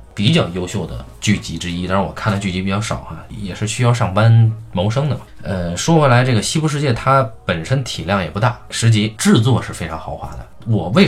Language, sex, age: Chinese, male, 20-39